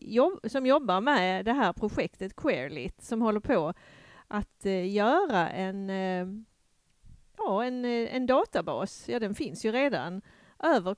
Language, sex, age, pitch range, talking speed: Swedish, female, 40-59, 195-240 Hz, 125 wpm